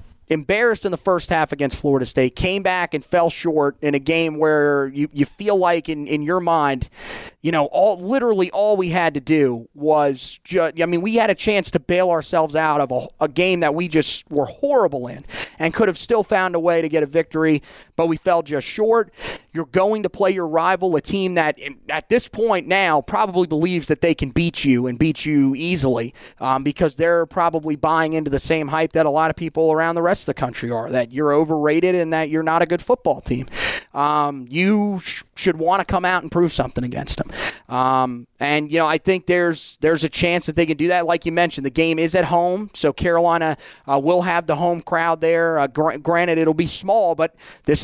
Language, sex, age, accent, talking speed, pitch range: English, male, 30-49, American, 230 wpm, 150-180 Hz